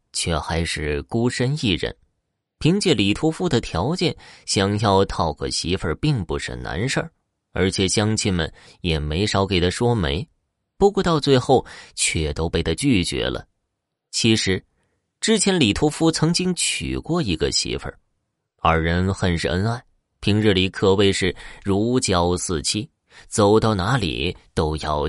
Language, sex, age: Chinese, male, 20-39